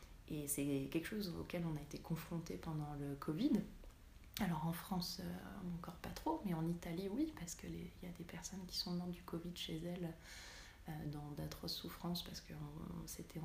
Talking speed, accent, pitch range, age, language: 190 wpm, French, 150-185 Hz, 20-39, French